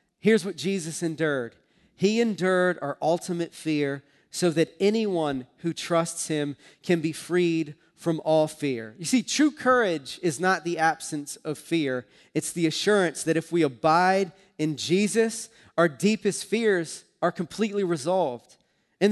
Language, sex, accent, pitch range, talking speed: English, male, American, 145-190 Hz, 150 wpm